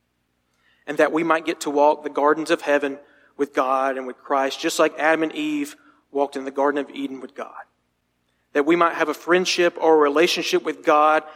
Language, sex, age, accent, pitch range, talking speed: English, male, 40-59, American, 130-160 Hz, 210 wpm